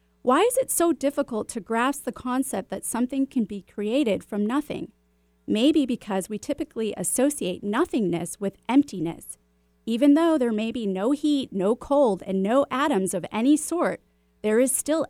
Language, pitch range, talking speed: English, 190-270 Hz, 165 wpm